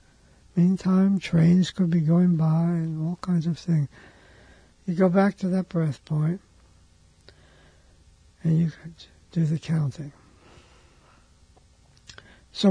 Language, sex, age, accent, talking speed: English, male, 60-79, American, 120 wpm